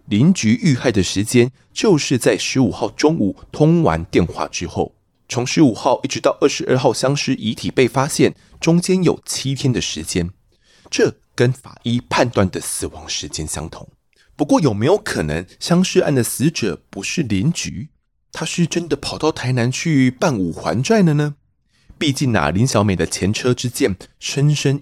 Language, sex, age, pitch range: Chinese, male, 30-49, 100-145 Hz